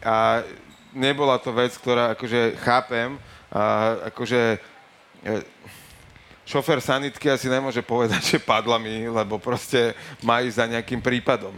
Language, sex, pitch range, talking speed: Slovak, male, 110-130 Hz, 130 wpm